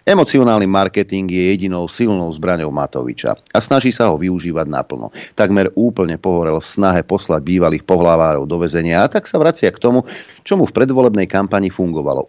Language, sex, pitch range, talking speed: Slovak, male, 80-95 Hz, 160 wpm